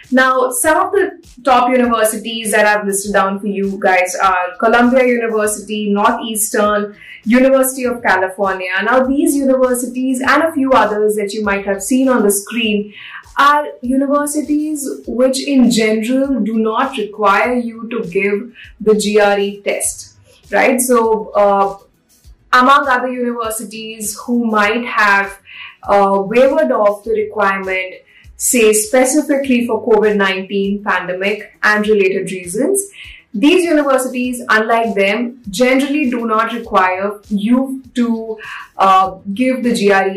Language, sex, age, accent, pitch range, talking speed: English, female, 20-39, Indian, 205-255 Hz, 125 wpm